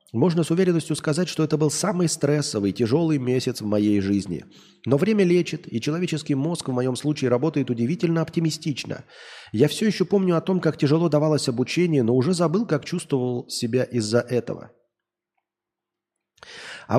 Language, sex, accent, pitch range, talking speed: Russian, male, native, 125-170 Hz, 160 wpm